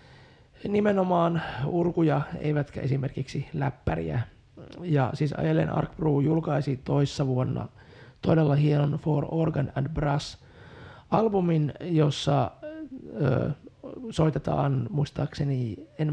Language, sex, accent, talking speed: Finnish, male, native, 85 wpm